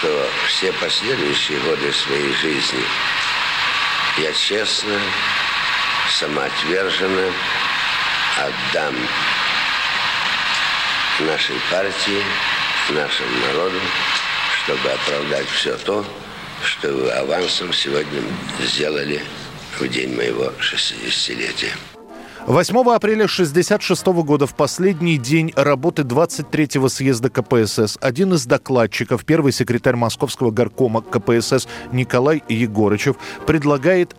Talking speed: 85 wpm